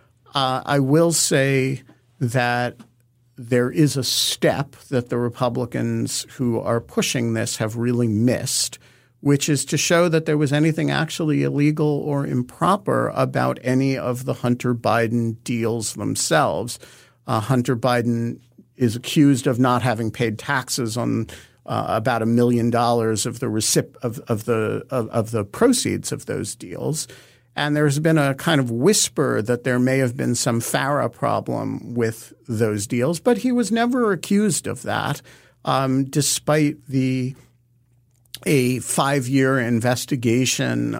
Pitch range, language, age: 120-145 Hz, English, 50-69